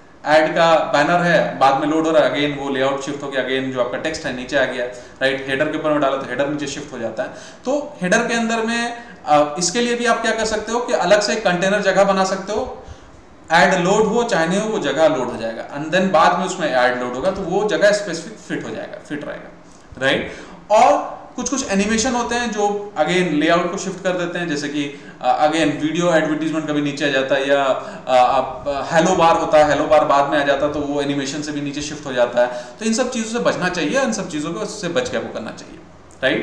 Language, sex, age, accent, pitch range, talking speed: Hindi, male, 30-49, native, 145-195 Hz, 150 wpm